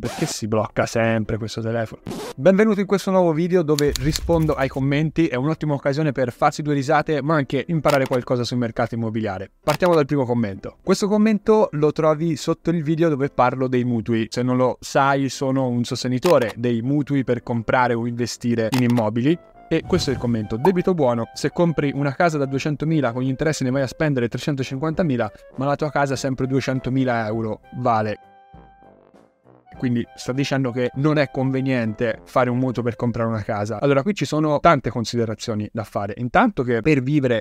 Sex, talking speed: male, 185 wpm